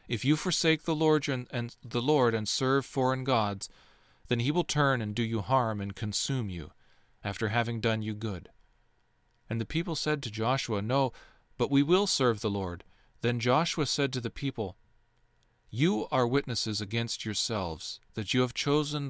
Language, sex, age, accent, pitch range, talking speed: English, male, 40-59, American, 110-135 Hz, 170 wpm